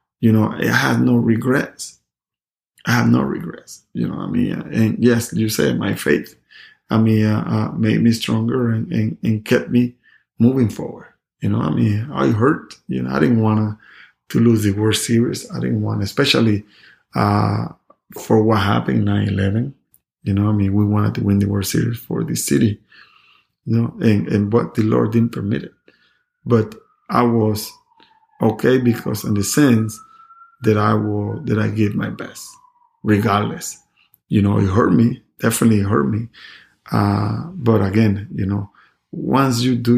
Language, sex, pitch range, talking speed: English, male, 105-120 Hz, 180 wpm